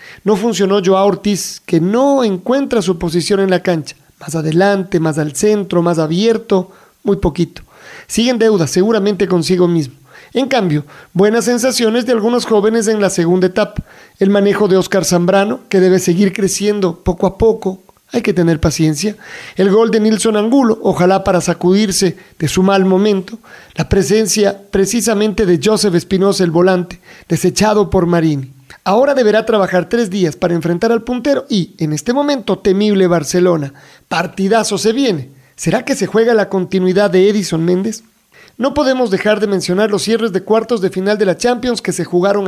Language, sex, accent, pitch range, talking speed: Spanish, male, Mexican, 180-220 Hz, 170 wpm